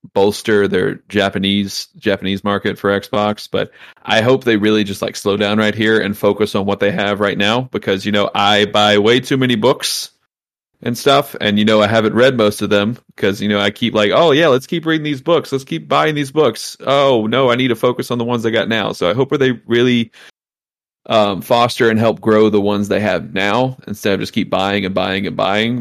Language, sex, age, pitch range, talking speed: English, male, 30-49, 100-120 Hz, 230 wpm